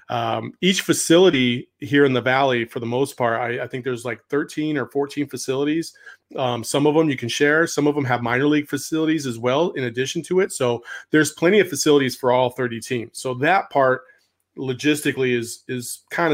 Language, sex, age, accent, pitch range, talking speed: English, male, 30-49, American, 125-150 Hz, 205 wpm